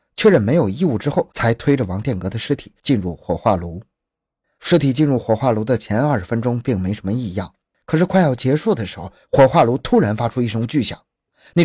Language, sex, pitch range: Chinese, male, 105-140 Hz